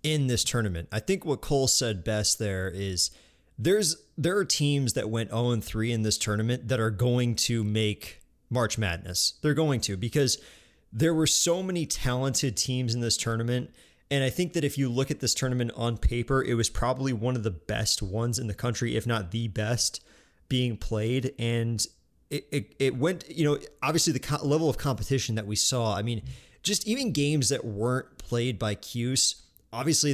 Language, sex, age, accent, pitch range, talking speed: English, male, 20-39, American, 110-130 Hz, 195 wpm